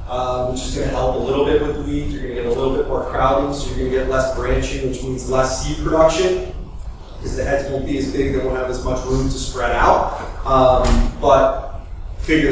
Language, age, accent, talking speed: English, 20-39, American, 250 wpm